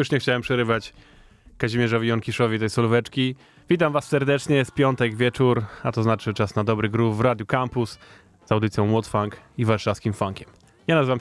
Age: 20-39